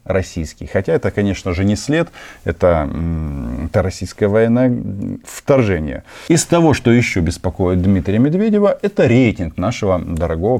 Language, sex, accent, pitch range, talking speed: Russian, male, native, 90-120 Hz, 130 wpm